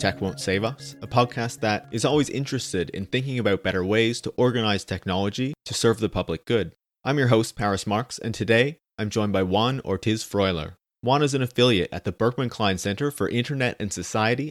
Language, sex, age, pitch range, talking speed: English, male, 30-49, 100-125 Hz, 200 wpm